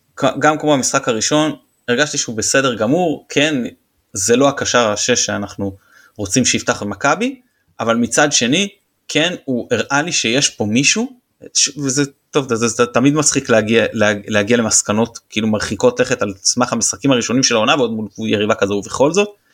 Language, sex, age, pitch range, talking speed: Hebrew, male, 20-39, 110-145 Hz, 160 wpm